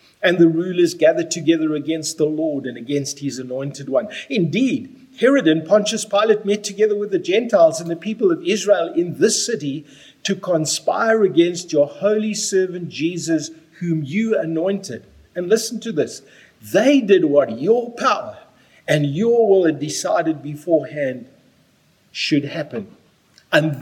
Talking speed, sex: 150 wpm, male